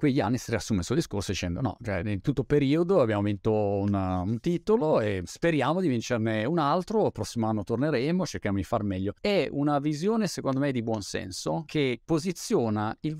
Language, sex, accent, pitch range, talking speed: Italian, male, native, 110-160 Hz, 195 wpm